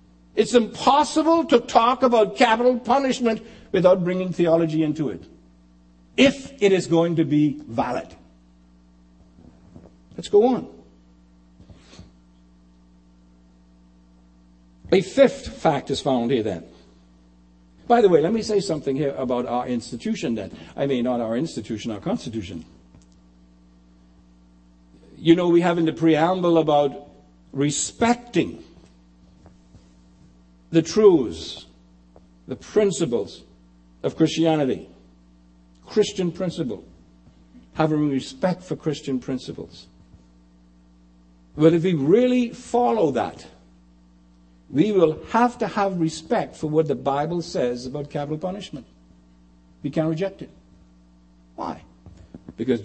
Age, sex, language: 60-79, male, English